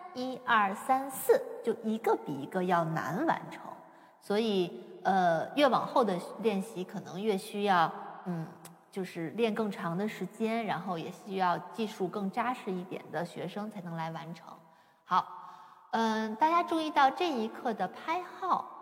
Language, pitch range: Chinese, 180-255 Hz